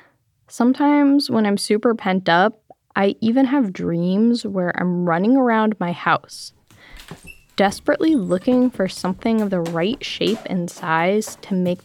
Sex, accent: female, American